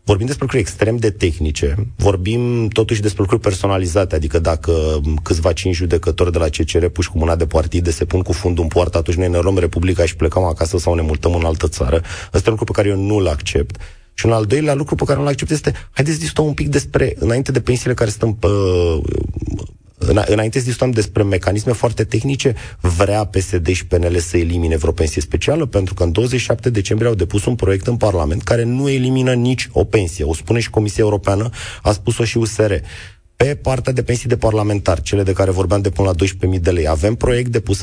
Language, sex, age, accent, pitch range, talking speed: Romanian, male, 30-49, native, 90-115 Hz, 215 wpm